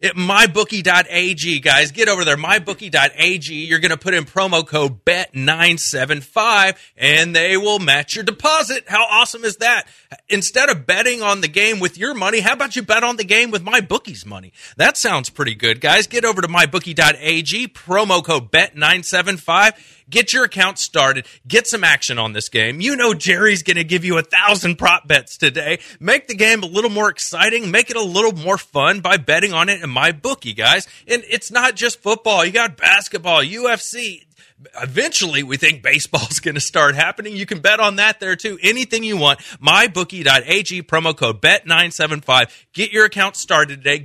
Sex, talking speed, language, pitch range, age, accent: male, 185 wpm, English, 160-215 Hz, 30-49, American